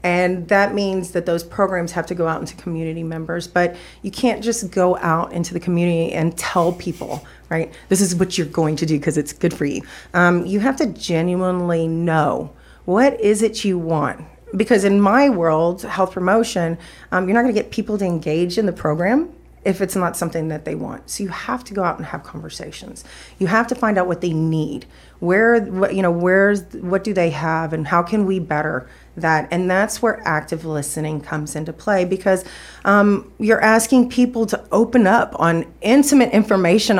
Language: English